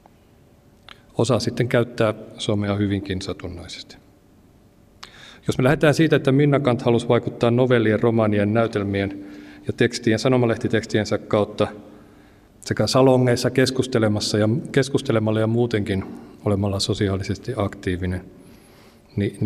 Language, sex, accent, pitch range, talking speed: Finnish, male, native, 100-125 Hz, 100 wpm